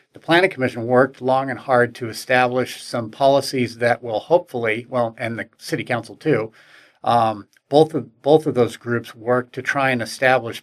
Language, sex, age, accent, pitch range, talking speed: English, male, 40-59, American, 115-130 Hz, 180 wpm